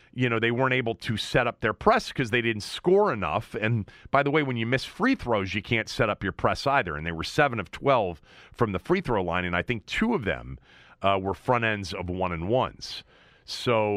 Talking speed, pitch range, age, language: 245 wpm, 105-135 Hz, 40-59, English